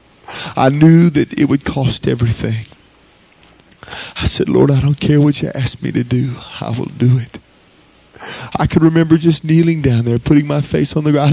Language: English